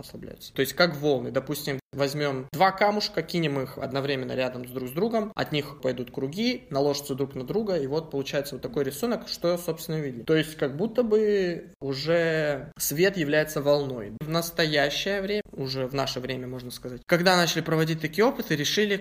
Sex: male